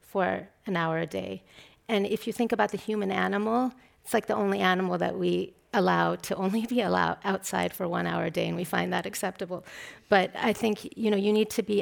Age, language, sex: 40-59, English, female